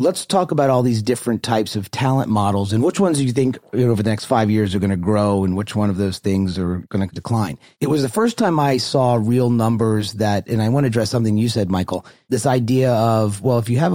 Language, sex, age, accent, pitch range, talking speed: English, male, 30-49, American, 105-130 Hz, 265 wpm